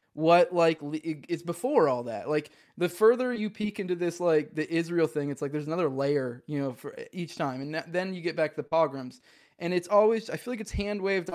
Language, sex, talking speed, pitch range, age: English, male, 235 wpm, 150-185 Hz, 20-39